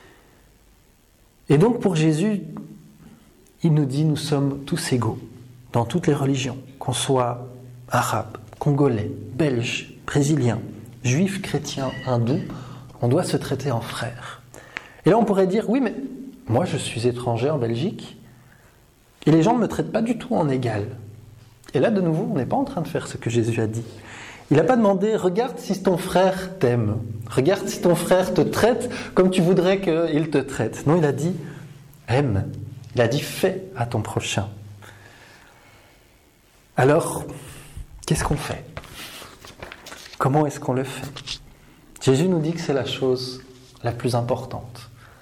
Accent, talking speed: French, 160 wpm